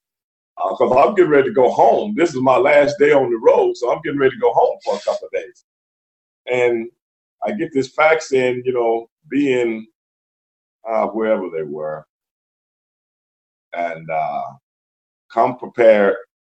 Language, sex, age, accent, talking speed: English, male, 50-69, American, 165 wpm